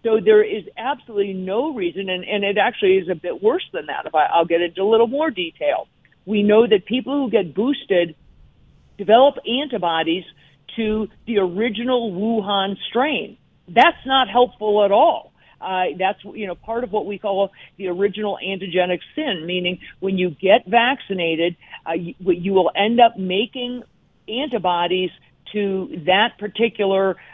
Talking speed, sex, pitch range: 160 wpm, female, 180-230 Hz